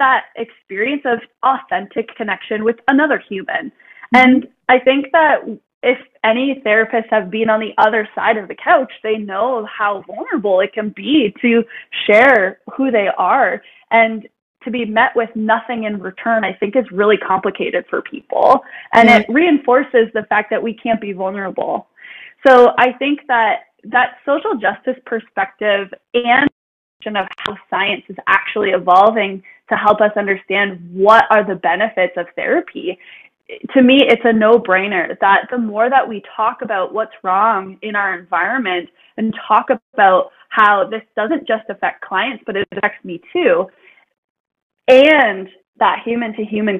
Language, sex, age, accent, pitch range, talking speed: English, female, 20-39, American, 200-250 Hz, 160 wpm